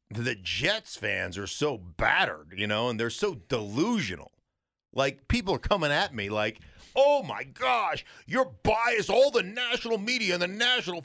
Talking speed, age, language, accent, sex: 170 wpm, 40-59, English, American, male